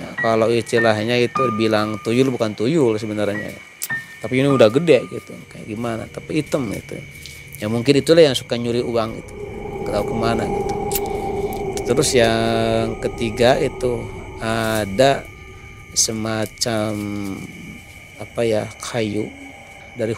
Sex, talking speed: male, 115 wpm